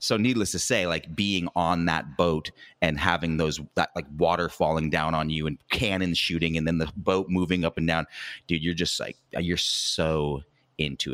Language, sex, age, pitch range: English, male, 30-49, 80-105 Hz